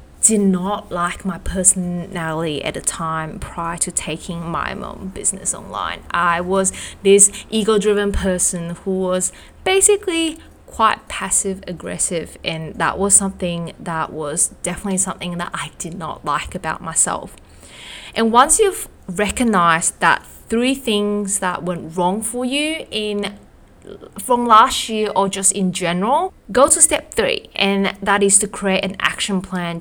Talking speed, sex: 145 wpm, female